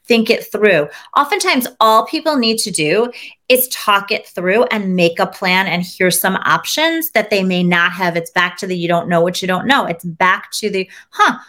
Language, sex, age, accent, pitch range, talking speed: English, female, 30-49, American, 185-245 Hz, 220 wpm